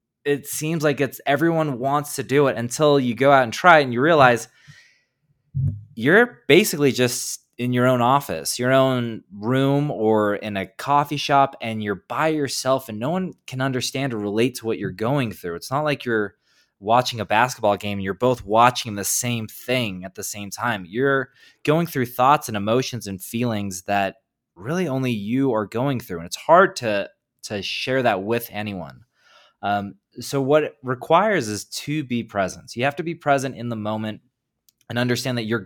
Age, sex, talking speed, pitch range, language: 20-39, male, 190 wpm, 110-140 Hz, English